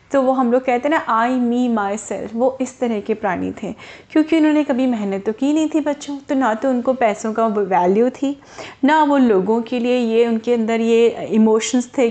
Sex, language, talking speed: female, Hindi, 225 wpm